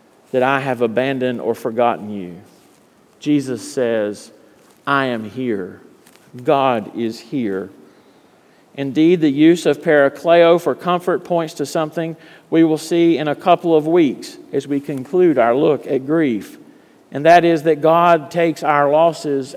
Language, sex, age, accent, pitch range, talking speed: English, male, 50-69, American, 135-175 Hz, 145 wpm